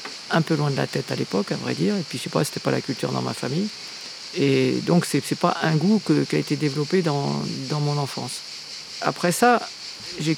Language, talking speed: French, 250 wpm